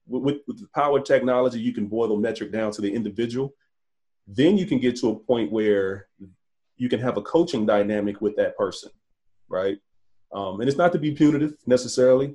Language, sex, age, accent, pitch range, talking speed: English, male, 30-49, American, 105-125 Hz, 195 wpm